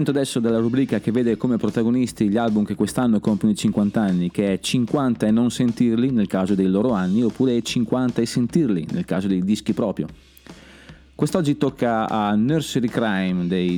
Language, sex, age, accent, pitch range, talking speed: Italian, male, 30-49, native, 95-120 Hz, 180 wpm